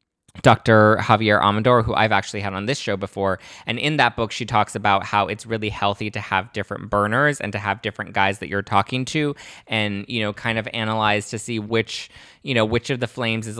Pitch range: 100-120 Hz